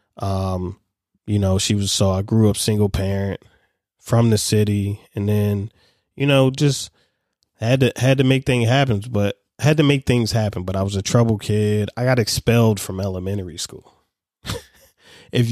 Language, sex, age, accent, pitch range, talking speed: English, male, 20-39, American, 105-145 Hz, 175 wpm